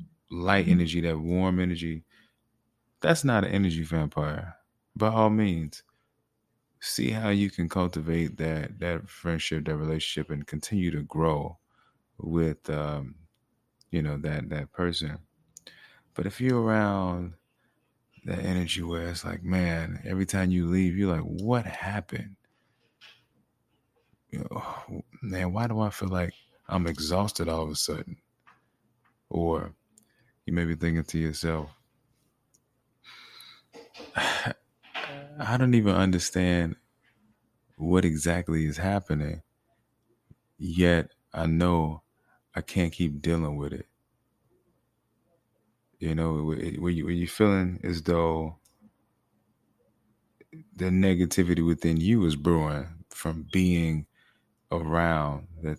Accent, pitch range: American, 80-110 Hz